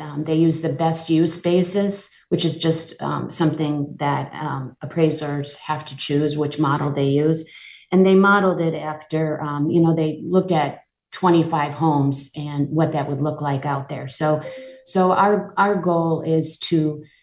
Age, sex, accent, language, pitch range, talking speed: 40-59, female, American, English, 150-175 Hz, 175 wpm